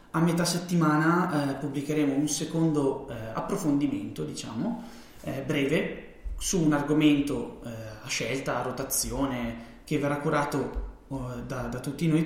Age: 20-39